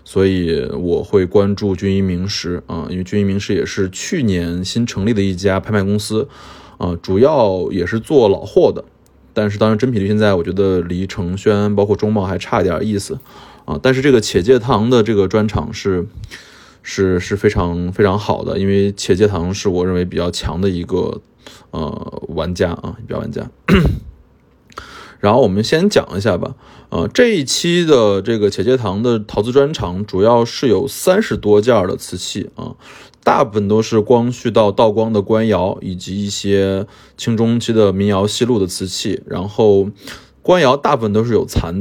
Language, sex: Chinese, male